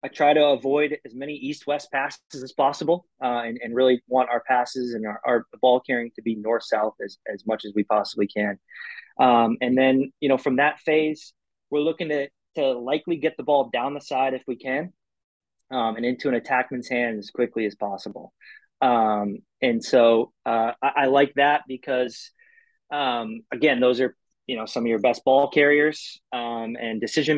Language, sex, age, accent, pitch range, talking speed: English, male, 20-39, American, 120-145 Hz, 195 wpm